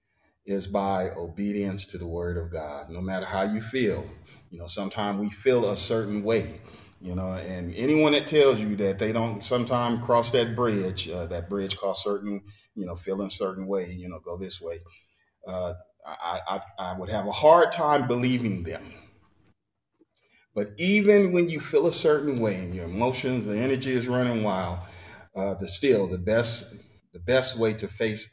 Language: English